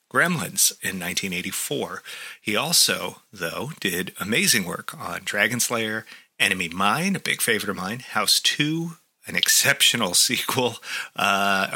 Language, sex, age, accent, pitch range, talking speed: English, male, 30-49, American, 100-130 Hz, 130 wpm